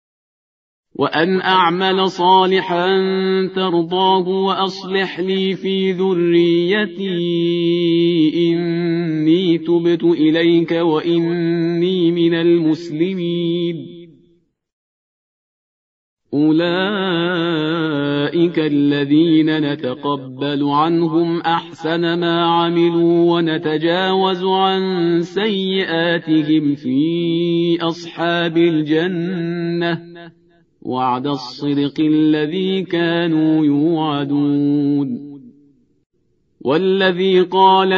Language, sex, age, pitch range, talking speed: Persian, male, 40-59, 165-185 Hz, 55 wpm